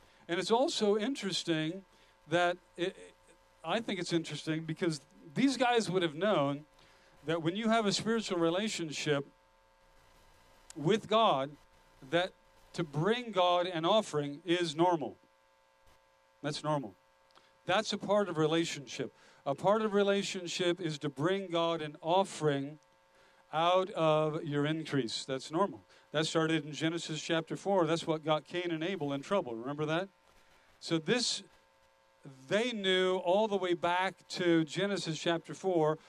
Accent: American